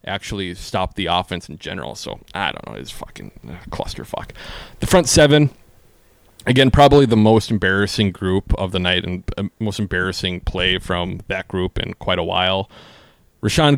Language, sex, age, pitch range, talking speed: English, male, 30-49, 95-115 Hz, 160 wpm